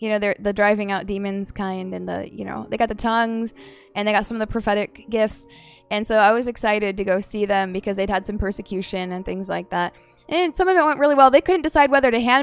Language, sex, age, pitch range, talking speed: English, female, 20-39, 195-225 Hz, 265 wpm